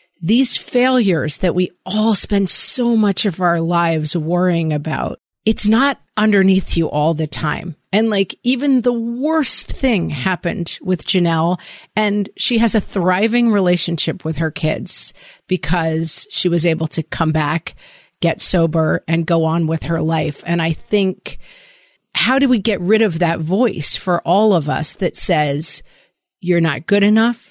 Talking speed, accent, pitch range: 160 wpm, American, 165-215 Hz